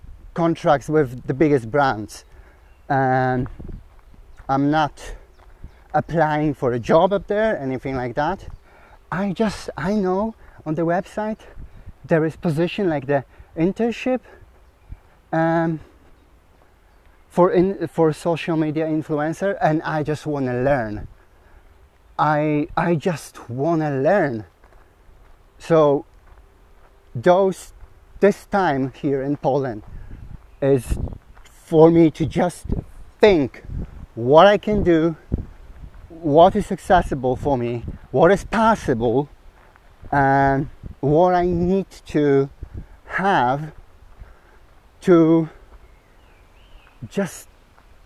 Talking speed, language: 105 wpm, English